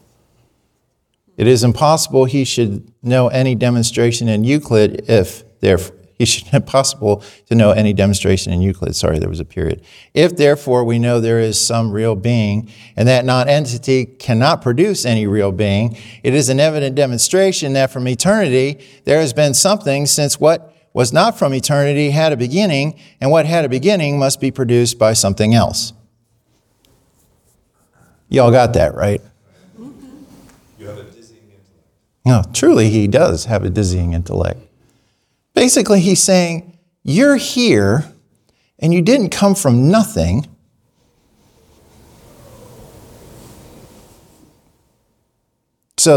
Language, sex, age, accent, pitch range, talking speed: English, male, 50-69, American, 110-150 Hz, 130 wpm